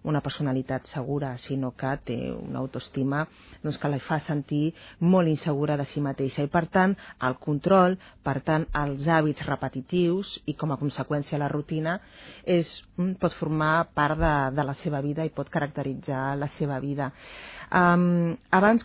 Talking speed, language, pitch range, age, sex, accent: 160 wpm, Spanish, 145-170 Hz, 30-49, female, Spanish